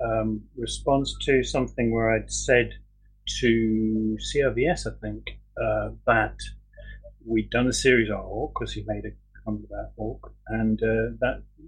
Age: 40-59